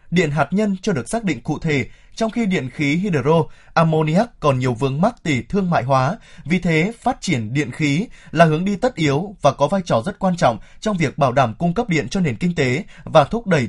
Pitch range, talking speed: 140-185 Hz, 240 wpm